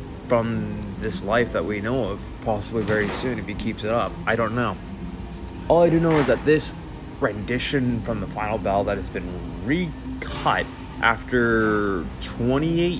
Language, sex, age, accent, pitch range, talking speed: English, male, 20-39, American, 105-130 Hz, 165 wpm